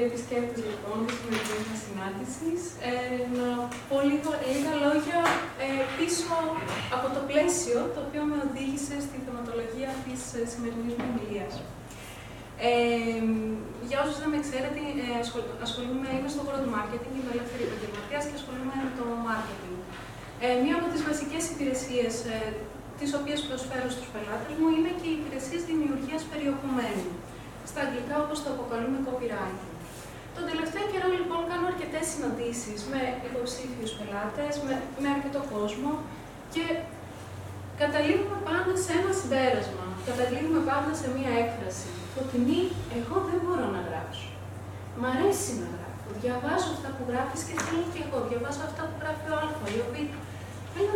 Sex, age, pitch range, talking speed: female, 30-49, 235-310 Hz, 145 wpm